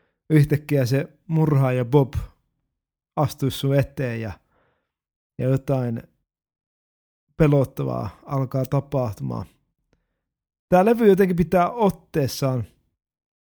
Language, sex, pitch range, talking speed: Finnish, male, 125-160 Hz, 80 wpm